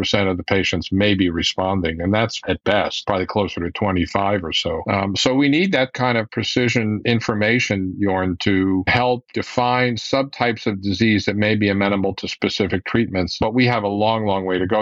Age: 50-69